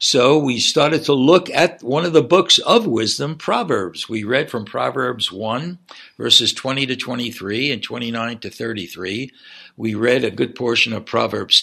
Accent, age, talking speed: American, 60-79, 170 wpm